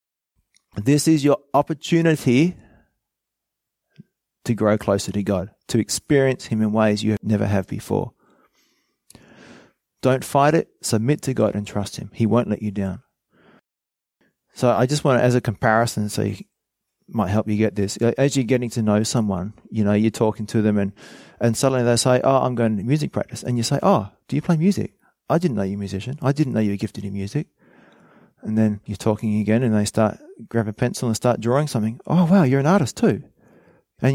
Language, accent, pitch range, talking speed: English, Australian, 105-140 Hz, 205 wpm